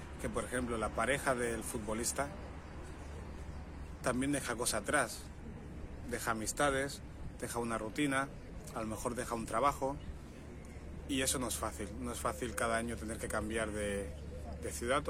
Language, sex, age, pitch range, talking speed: Spanish, male, 30-49, 75-120 Hz, 150 wpm